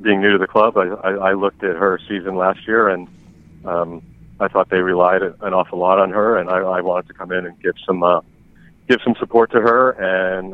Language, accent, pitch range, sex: English, American, 90-100 Hz, male